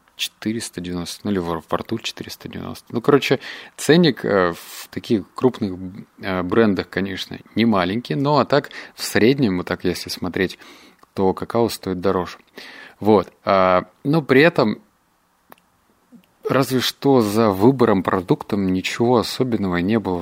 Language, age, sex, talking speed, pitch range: Russian, 30-49, male, 125 wpm, 90-115 Hz